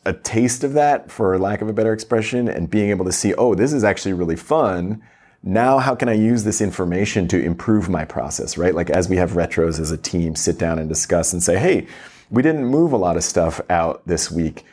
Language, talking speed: English, 235 wpm